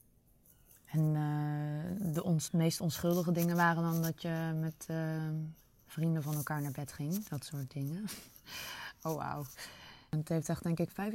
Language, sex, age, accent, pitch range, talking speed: Dutch, female, 20-39, Dutch, 155-190 Hz, 155 wpm